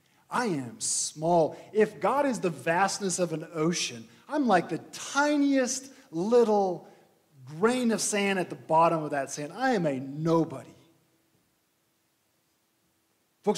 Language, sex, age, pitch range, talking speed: English, male, 40-59, 160-245 Hz, 135 wpm